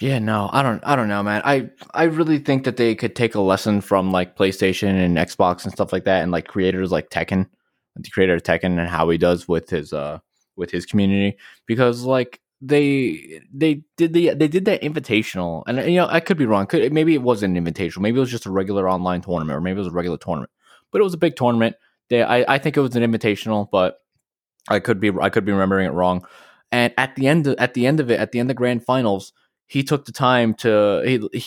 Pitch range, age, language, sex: 95-125 Hz, 20-39, English, male